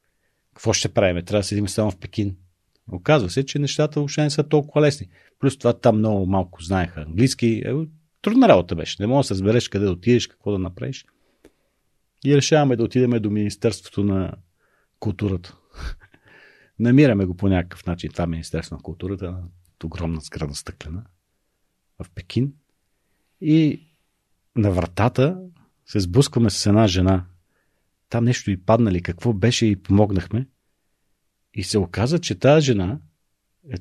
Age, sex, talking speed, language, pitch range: 40-59, male, 150 wpm, Bulgarian, 95-140 Hz